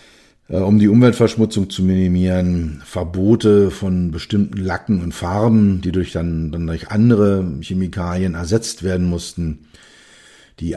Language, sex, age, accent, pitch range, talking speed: German, male, 50-69, German, 85-105 Hz, 125 wpm